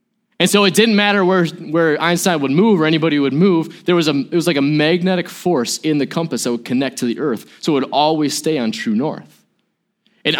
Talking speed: 235 wpm